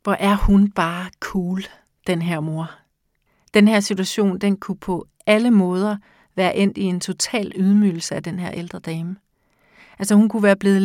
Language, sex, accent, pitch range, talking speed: Danish, female, native, 185-210 Hz, 175 wpm